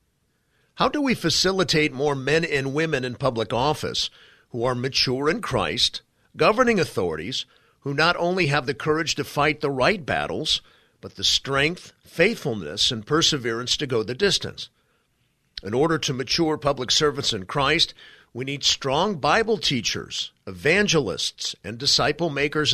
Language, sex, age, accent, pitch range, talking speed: English, male, 50-69, American, 130-165 Hz, 145 wpm